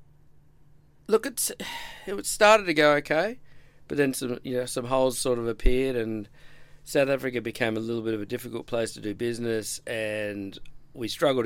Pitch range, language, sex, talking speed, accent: 110-140 Hz, English, male, 180 wpm, Australian